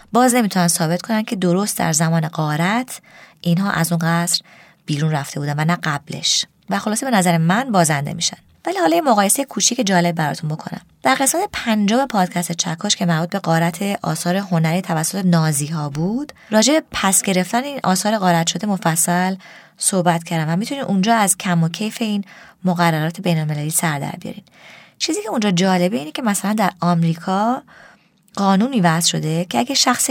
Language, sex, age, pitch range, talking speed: Persian, female, 20-39, 170-215 Hz, 170 wpm